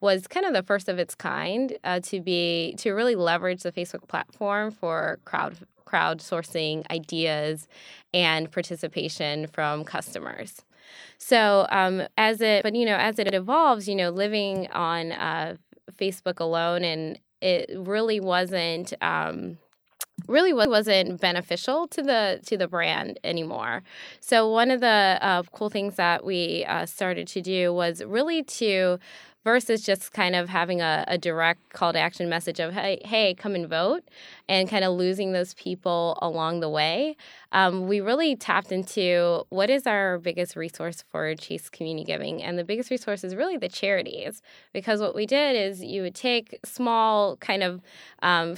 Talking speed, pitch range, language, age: 165 wpm, 175-210 Hz, English, 10-29